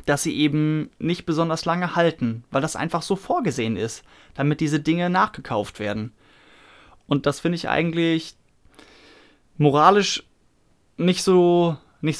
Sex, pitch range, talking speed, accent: male, 140-170 Hz, 125 wpm, German